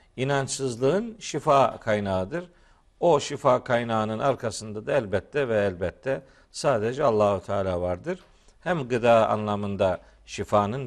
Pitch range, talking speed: 110-150 Hz, 105 wpm